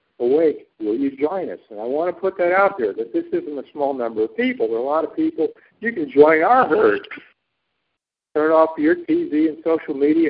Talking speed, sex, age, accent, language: 225 wpm, male, 60-79, American, English